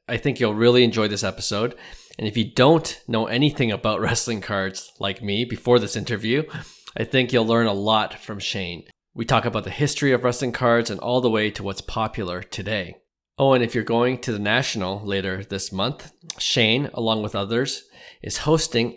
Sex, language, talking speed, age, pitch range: male, English, 195 wpm, 20-39, 105-130 Hz